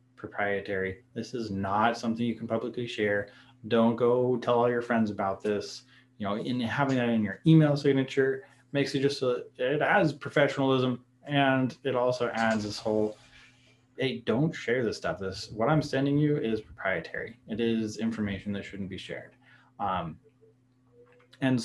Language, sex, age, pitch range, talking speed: English, male, 20-39, 110-130 Hz, 165 wpm